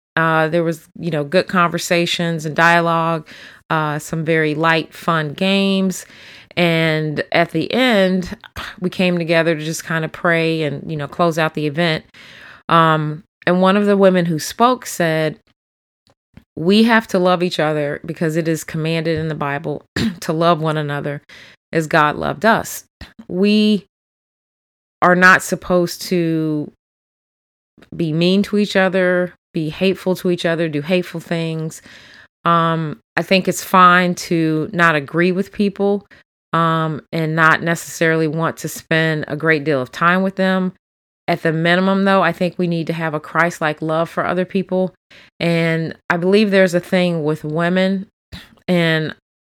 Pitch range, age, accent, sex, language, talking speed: 160-180 Hz, 30-49, American, female, English, 155 wpm